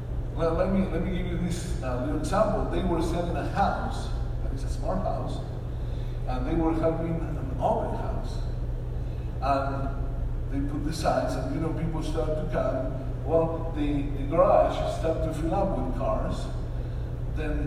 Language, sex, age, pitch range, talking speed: English, male, 50-69, 120-150 Hz, 170 wpm